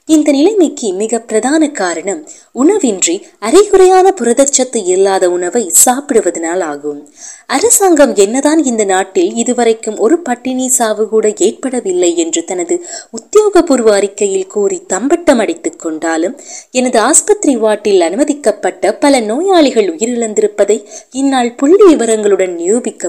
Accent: native